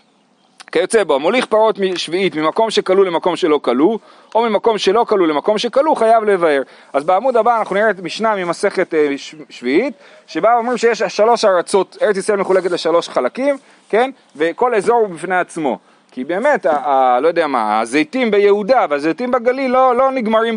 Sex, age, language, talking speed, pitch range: male, 30-49, Hebrew, 165 wpm, 175-245 Hz